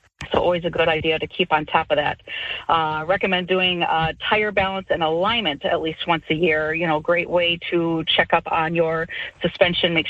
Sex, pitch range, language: female, 155-185 Hz, English